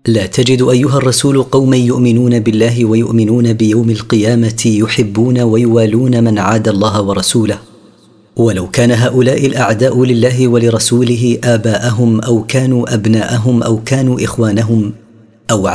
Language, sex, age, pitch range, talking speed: Arabic, female, 40-59, 110-120 Hz, 115 wpm